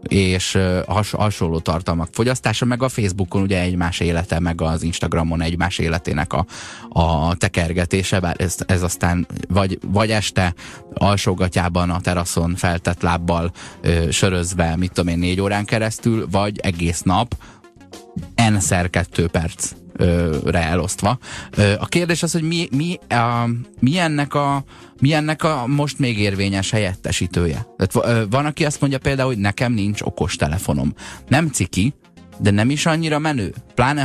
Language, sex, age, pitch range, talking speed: Hungarian, male, 20-39, 90-115 Hz, 145 wpm